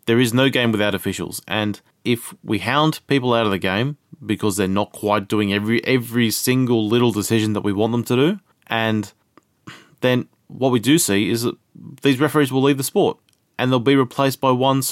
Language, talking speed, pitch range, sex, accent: English, 205 wpm, 105-130 Hz, male, Australian